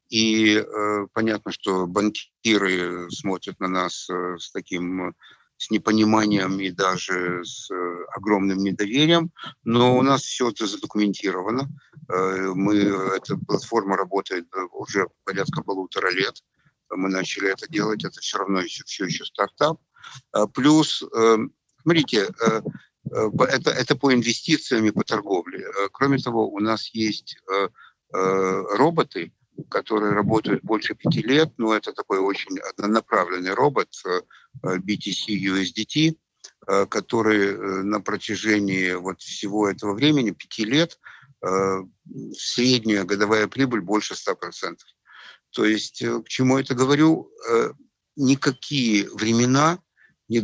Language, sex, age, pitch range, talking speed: Russian, male, 60-79, 95-125 Hz, 120 wpm